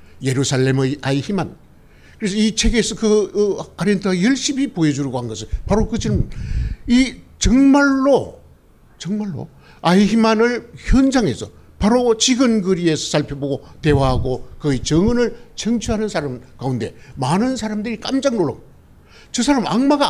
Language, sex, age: Korean, male, 60-79